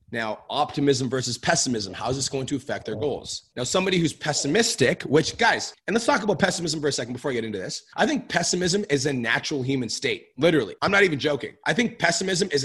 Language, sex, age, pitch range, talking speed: English, male, 30-49, 125-160 Hz, 230 wpm